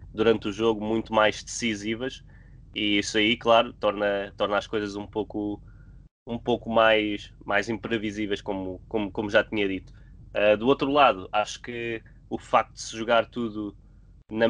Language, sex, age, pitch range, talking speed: Portuguese, male, 20-39, 105-115 Hz, 160 wpm